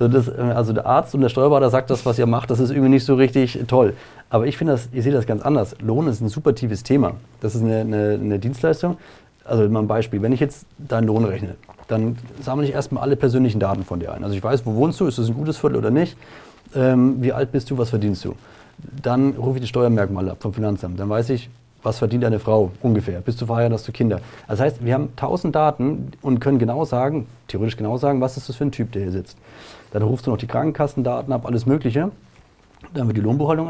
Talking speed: 245 wpm